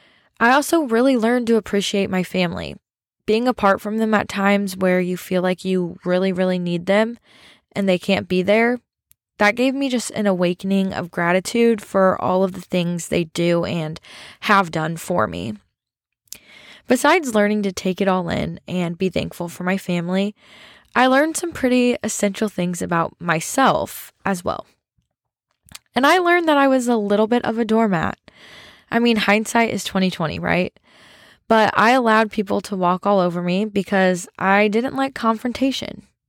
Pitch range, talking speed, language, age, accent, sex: 185-230 Hz, 170 wpm, English, 10-29, American, female